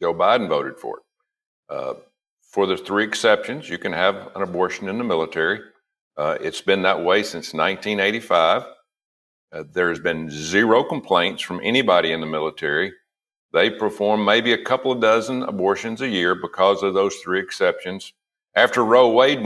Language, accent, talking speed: English, American, 165 wpm